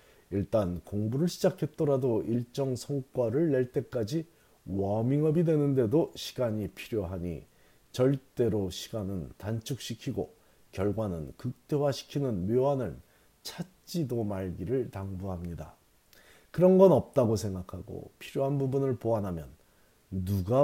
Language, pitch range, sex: Korean, 95-135 Hz, male